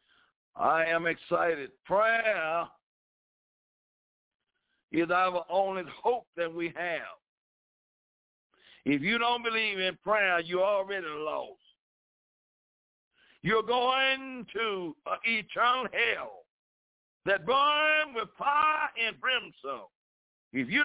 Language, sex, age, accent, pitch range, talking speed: English, male, 60-79, American, 175-260 Hz, 100 wpm